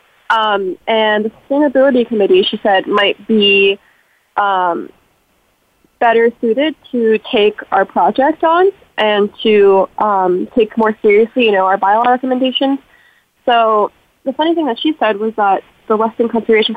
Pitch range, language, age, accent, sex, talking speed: 200-240 Hz, English, 20-39, American, female, 145 wpm